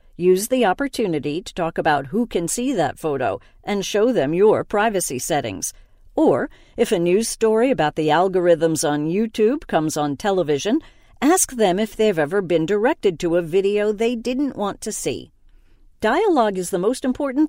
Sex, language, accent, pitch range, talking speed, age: female, English, American, 160-220 Hz, 170 wpm, 50-69